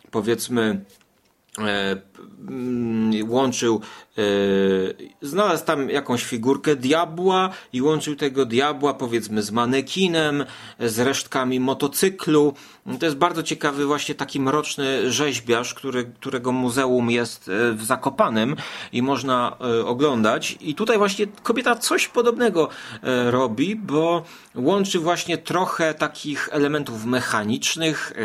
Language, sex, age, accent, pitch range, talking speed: Polish, male, 30-49, native, 120-165 Hz, 100 wpm